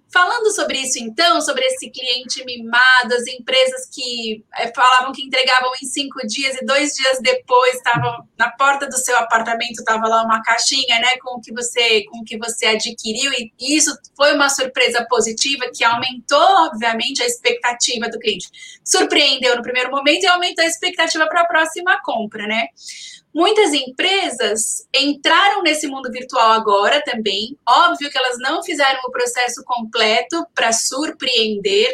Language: Portuguese